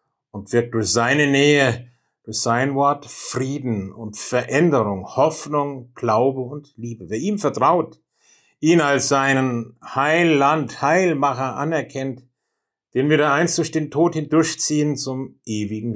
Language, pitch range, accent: German, 115-140 Hz, German